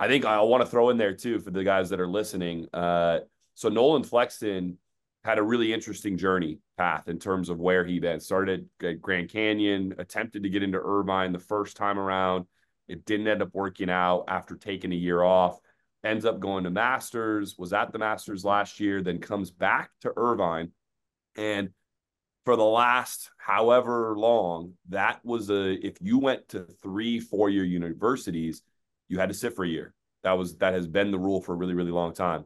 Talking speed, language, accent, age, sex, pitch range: 200 wpm, English, American, 30-49, male, 90-105 Hz